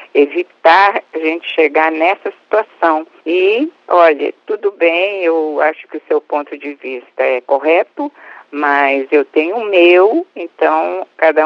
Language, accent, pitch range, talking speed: Portuguese, Brazilian, 155-210 Hz, 140 wpm